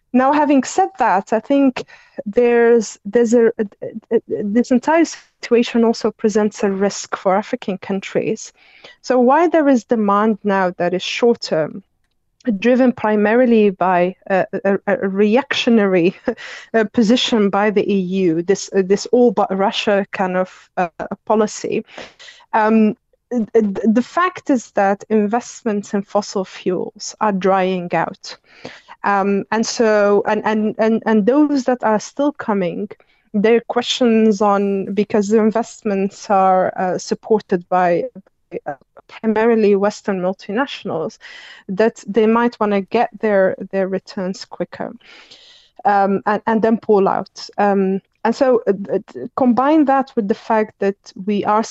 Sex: female